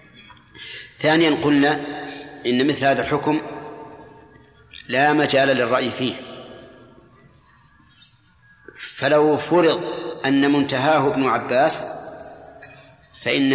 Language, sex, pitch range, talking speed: Arabic, male, 130-150 Hz, 75 wpm